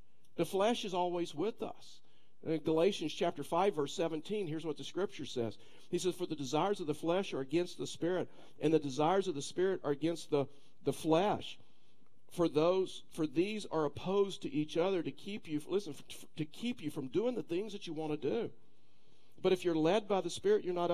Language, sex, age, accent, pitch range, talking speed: English, male, 50-69, American, 155-195 Hz, 210 wpm